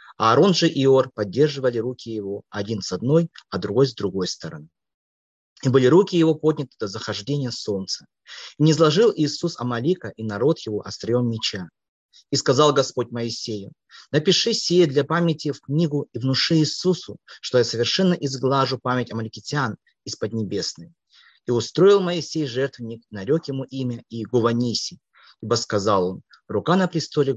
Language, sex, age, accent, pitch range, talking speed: Russian, male, 30-49, native, 115-155 Hz, 155 wpm